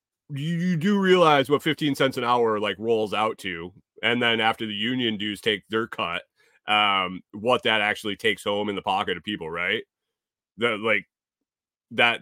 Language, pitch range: English, 110-150 Hz